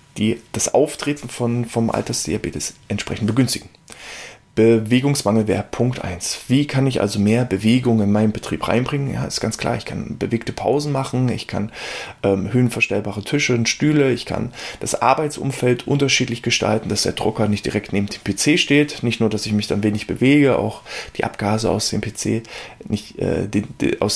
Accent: German